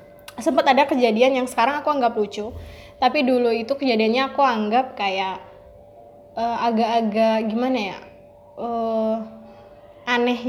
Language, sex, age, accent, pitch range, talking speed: Indonesian, female, 20-39, native, 185-245 Hz, 120 wpm